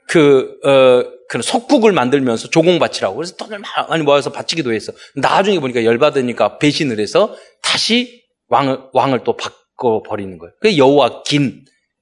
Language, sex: Korean, male